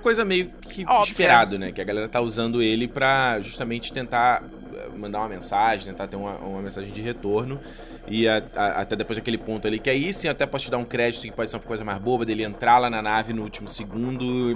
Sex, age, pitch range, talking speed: male, 20-39, 110-140 Hz, 235 wpm